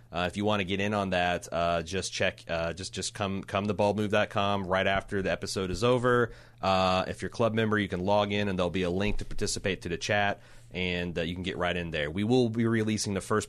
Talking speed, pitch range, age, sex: 265 wpm, 95-115 Hz, 30-49, male